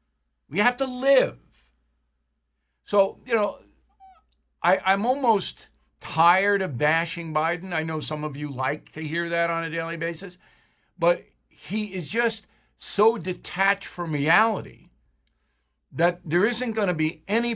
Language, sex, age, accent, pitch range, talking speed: English, male, 60-79, American, 125-185 Hz, 140 wpm